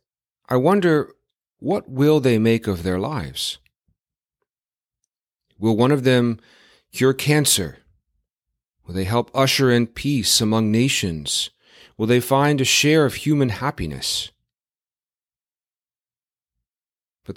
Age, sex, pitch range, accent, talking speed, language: 40-59, male, 95-135 Hz, American, 110 wpm, English